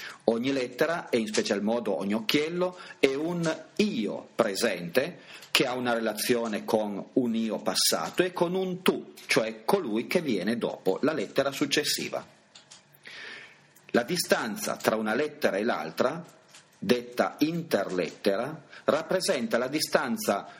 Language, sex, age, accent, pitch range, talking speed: Italian, male, 40-59, native, 120-200 Hz, 130 wpm